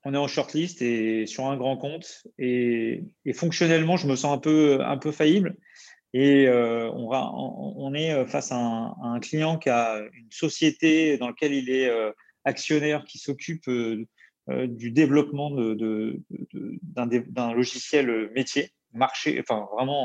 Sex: male